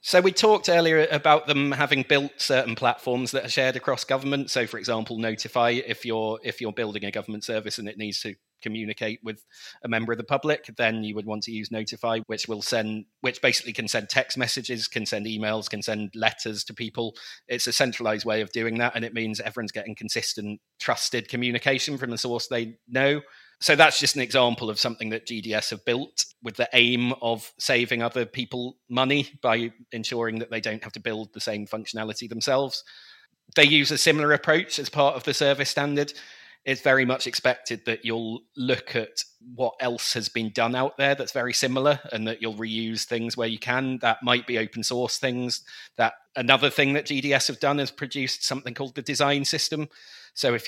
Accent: British